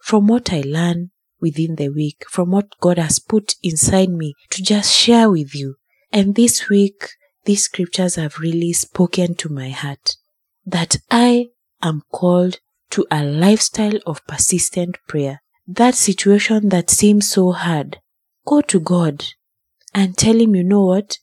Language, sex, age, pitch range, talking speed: English, female, 30-49, 160-205 Hz, 155 wpm